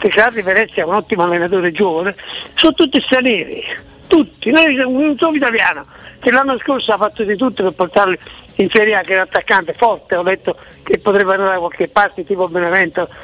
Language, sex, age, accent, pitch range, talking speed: Italian, male, 60-79, native, 205-265 Hz, 200 wpm